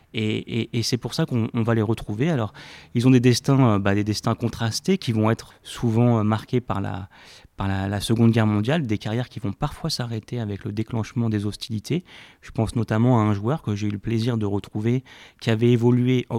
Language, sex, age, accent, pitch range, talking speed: French, male, 30-49, French, 110-130 Hz, 215 wpm